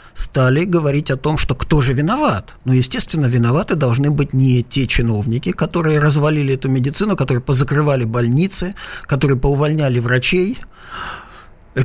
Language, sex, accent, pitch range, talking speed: Russian, male, native, 125-165 Hz, 130 wpm